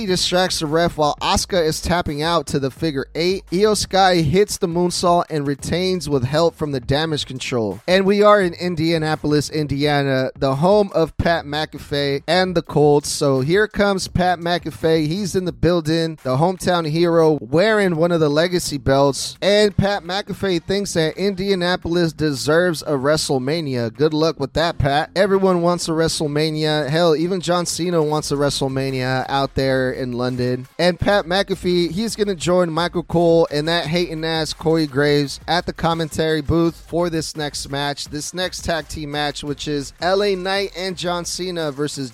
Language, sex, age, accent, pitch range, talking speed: English, male, 30-49, American, 145-180 Hz, 175 wpm